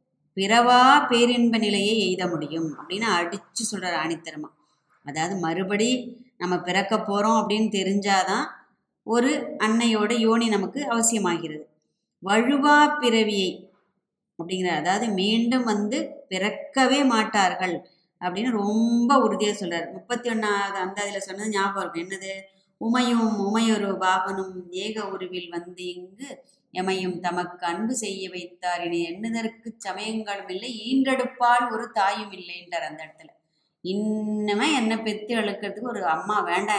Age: 20-39